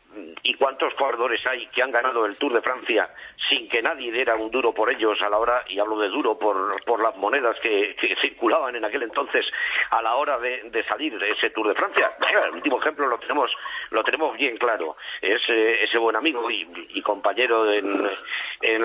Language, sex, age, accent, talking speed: Spanish, male, 50-69, Spanish, 210 wpm